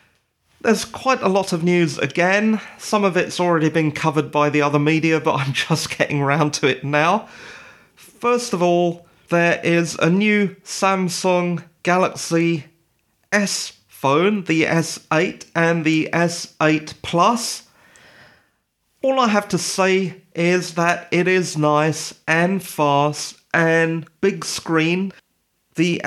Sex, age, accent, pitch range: male, 40-59, British, 155-190 Hz